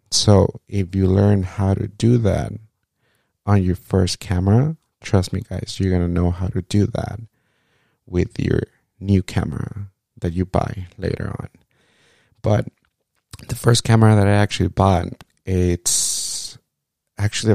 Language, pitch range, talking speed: Spanish, 95-115 Hz, 145 wpm